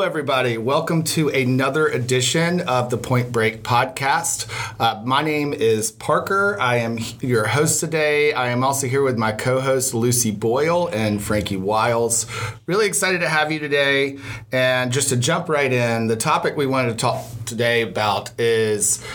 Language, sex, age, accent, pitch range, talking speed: English, male, 40-59, American, 115-140 Hz, 165 wpm